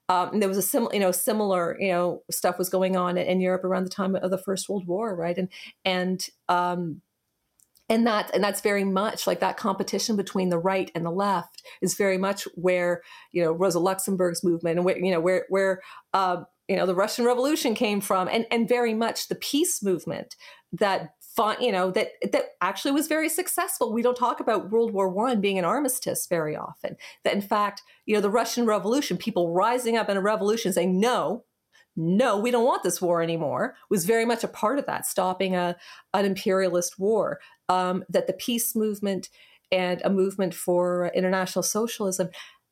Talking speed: 200 wpm